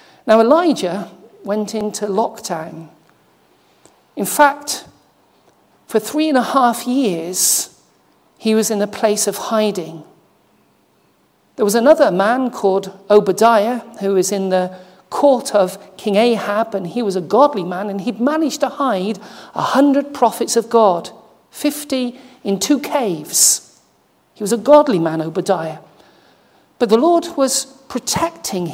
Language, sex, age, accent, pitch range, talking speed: English, male, 50-69, British, 200-275 Hz, 135 wpm